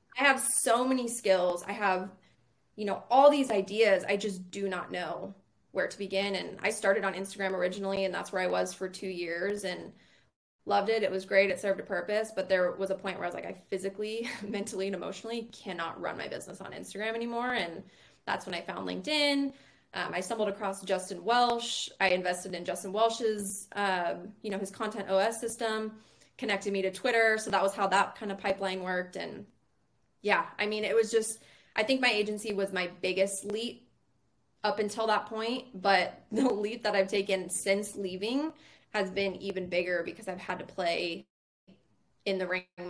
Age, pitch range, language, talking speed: 20-39, 190-220 Hz, English, 195 wpm